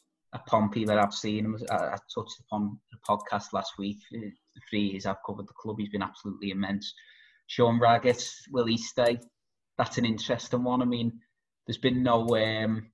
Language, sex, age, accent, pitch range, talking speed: English, male, 20-39, British, 105-125 Hz, 165 wpm